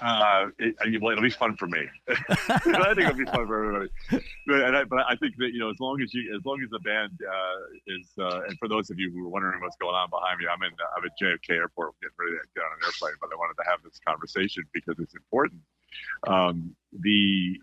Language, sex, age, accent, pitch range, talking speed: English, male, 40-59, American, 85-110 Hz, 250 wpm